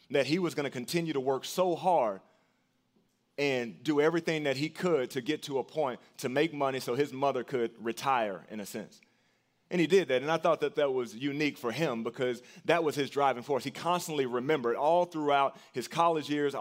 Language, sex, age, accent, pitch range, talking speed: English, male, 30-49, American, 125-155 Hz, 215 wpm